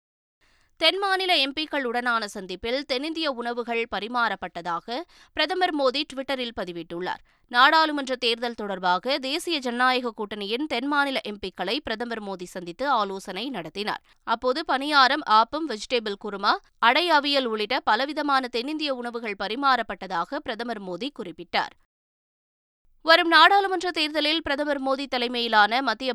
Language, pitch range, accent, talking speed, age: Tamil, 215-285 Hz, native, 105 wpm, 20-39